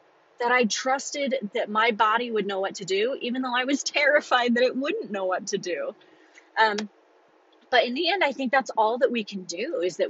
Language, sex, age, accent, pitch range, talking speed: English, female, 30-49, American, 190-245 Hz, 225 wpm